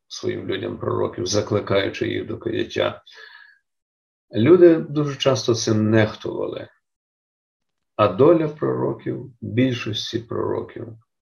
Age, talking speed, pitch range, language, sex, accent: 50-69, 90 wpm, 105-130 Hz, Ukrainian, male, native